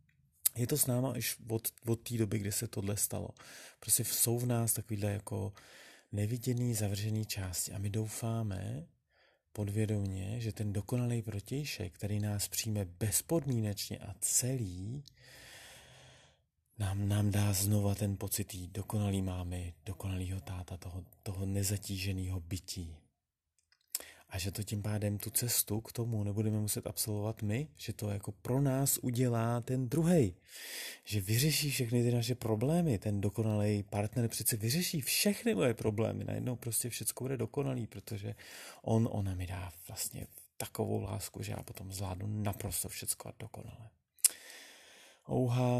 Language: Czech